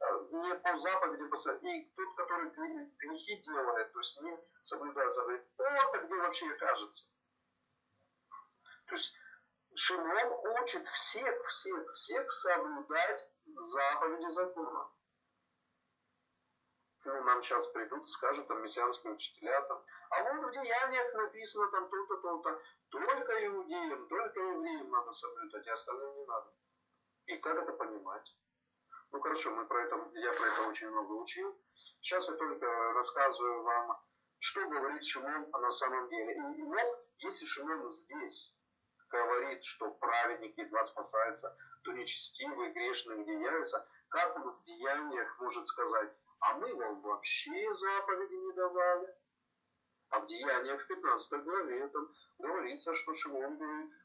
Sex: male